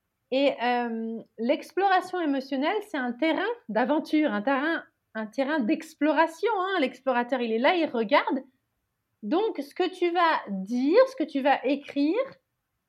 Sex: female